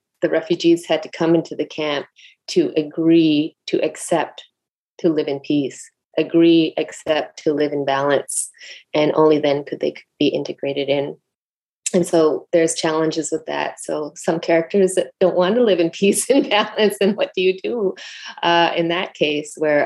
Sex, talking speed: female, 170 wpm